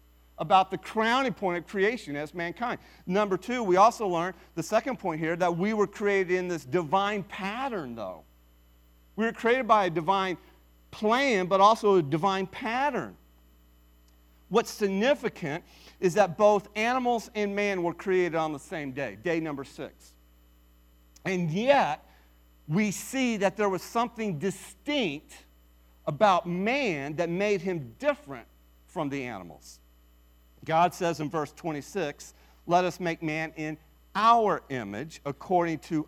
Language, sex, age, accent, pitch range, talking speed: English, male, 40-59, American, 125-195 Hz, 145 wpm